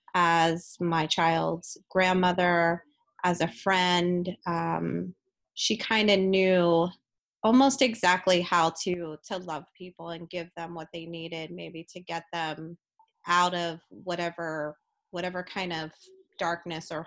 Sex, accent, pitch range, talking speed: female, American, 170-190 Hz, 130 wpm